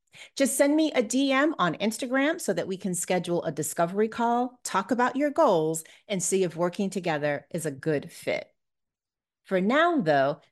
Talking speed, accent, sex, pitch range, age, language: 175 wpm, American, female, 165-230 Hz, 30-49, English